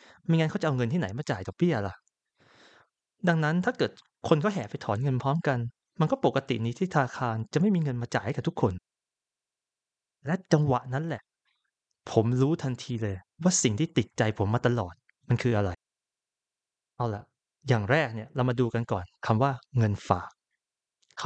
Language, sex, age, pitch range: Thai, male, 20-39, 110-145 Hz